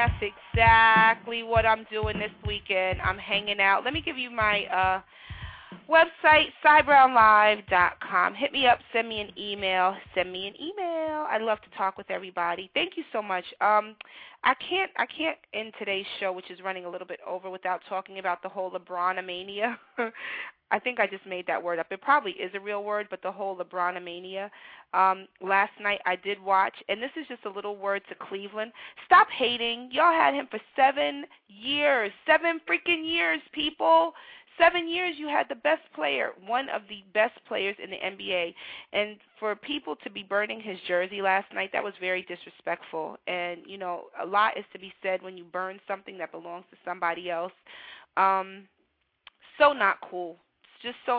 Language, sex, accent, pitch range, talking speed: English, female, American, 185-245 Hz, 185 wpm